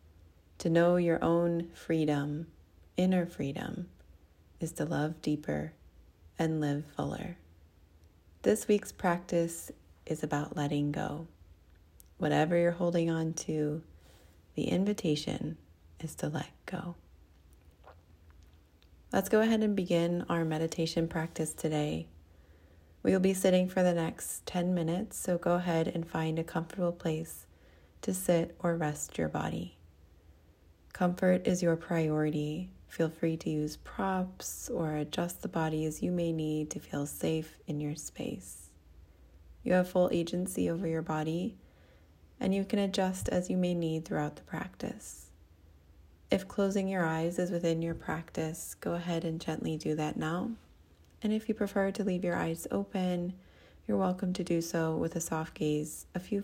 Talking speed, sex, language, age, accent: 150 wpm, female, English, 30-49, American